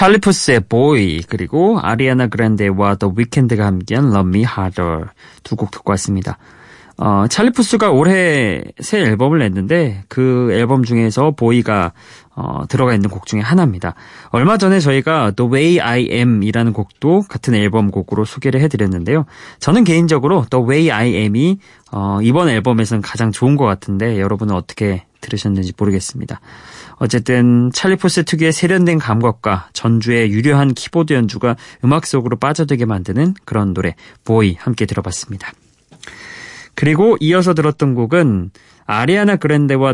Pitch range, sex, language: 105-150 Hz, male, Korean